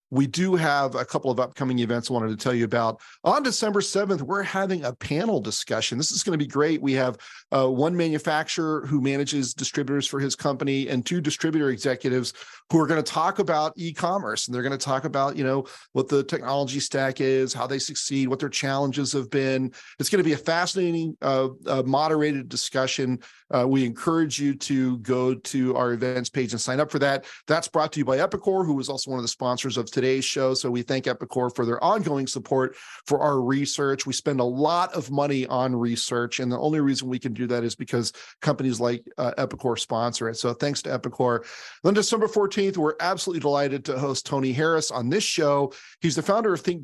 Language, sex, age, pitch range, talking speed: English, male, 40-59, 125-155 Hz, 215 wpm